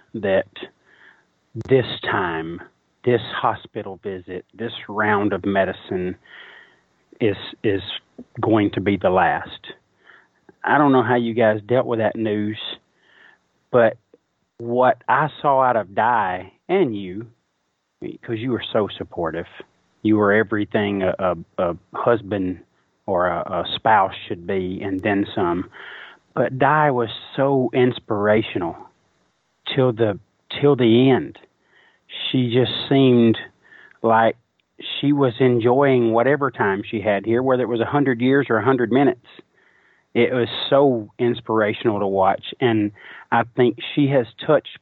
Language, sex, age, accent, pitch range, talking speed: English, male, 30-49, American, 105-130 Hz, 135 wpm